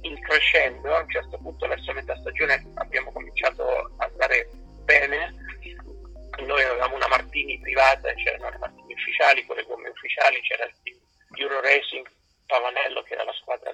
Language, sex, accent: Italian, male, native